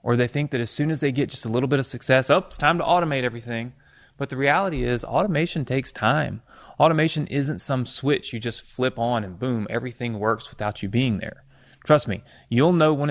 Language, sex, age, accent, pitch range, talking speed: English, male, 30-49, American, 105-135 Hz, 225 wpm